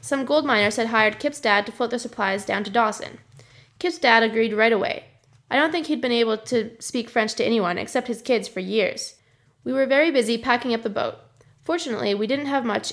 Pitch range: 215-260 Hz